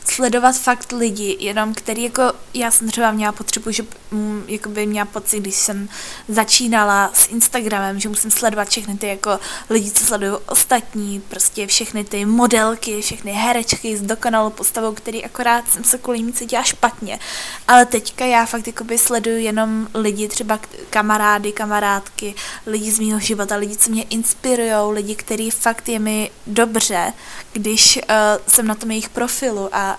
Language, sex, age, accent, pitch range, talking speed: Czech, female, 20-39, native, 210-230 Hz, 155 wpm